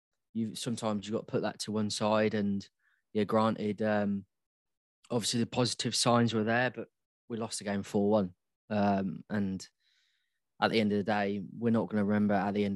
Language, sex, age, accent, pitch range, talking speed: English, male, 20-39, British, 100-115 Hz, 195 wpm